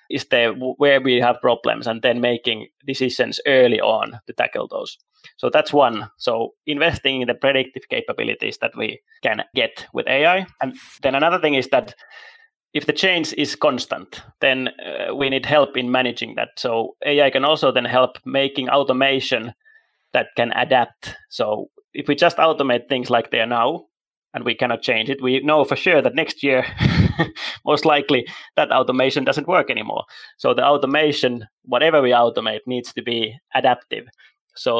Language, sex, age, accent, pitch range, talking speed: English, male, 20-39, Finnish, 125-150 Hz, 170 wpm